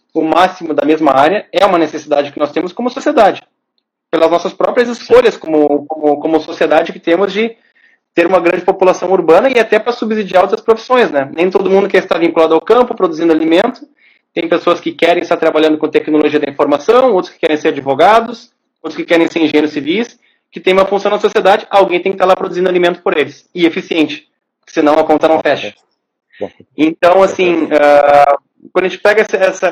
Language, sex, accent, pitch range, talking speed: Portuguese, male, Brazilian, 155-195 Hz, 195 wpm